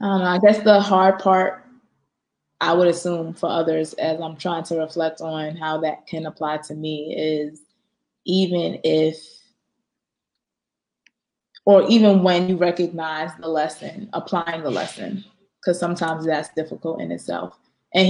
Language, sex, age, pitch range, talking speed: English, female, 20-39, 165-190 Hz, 145 wpm